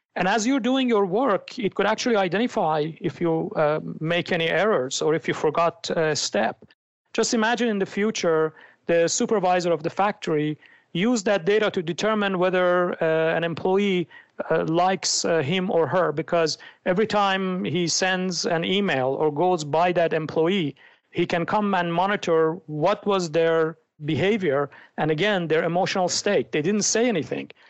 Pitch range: 160-200 Hz